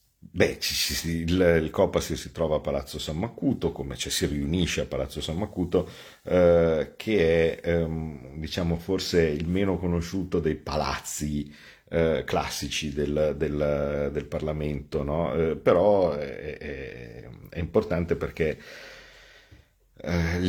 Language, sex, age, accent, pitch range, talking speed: Italian, male, 50-69, native, 70-85 Hz, 135 wpm